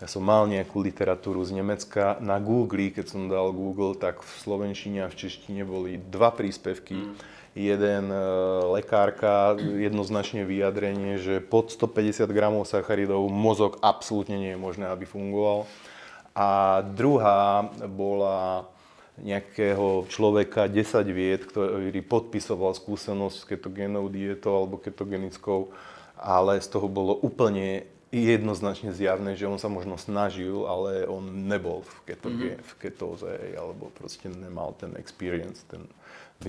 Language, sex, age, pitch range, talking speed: Slovak, male, 20-39, 95-105 Hz, 130 wpm